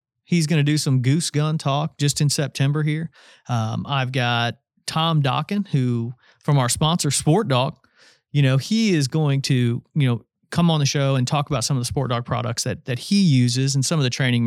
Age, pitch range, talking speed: 40-59, 125-155 Hz, 220 wpm